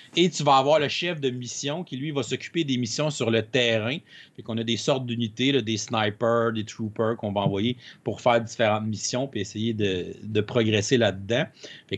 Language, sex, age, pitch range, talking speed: French, male, 30-49, 115-155 Hz, 210 wpm